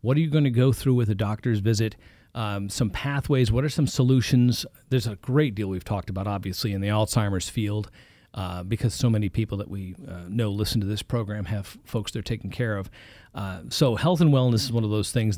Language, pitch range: English, 105-130 Hz